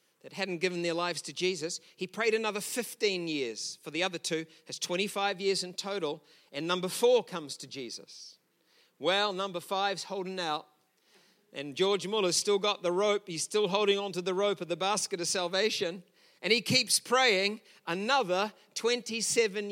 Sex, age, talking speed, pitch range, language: male, 50-69, 170 wpm, 160-215 Hz, English